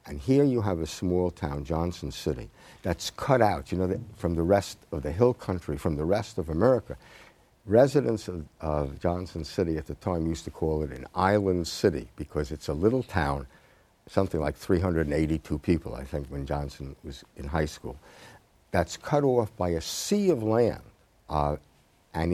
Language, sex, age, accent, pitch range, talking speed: English, male, 60-79, American, 80-105 Hz, 185 wpm